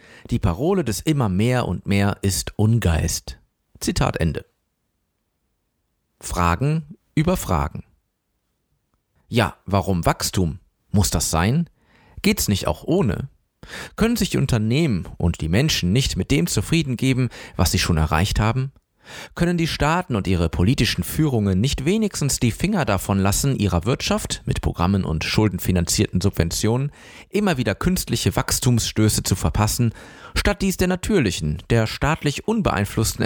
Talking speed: 135 wpm